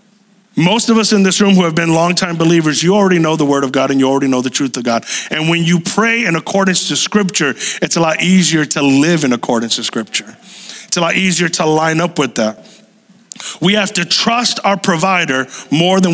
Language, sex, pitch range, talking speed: English, male, 185-235 Hz, 225 wpm